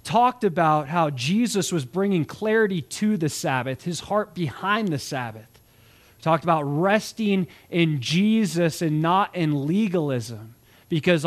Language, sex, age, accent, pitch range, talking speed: English, male, 20-39, American, 145-195 Hz, 135 wpm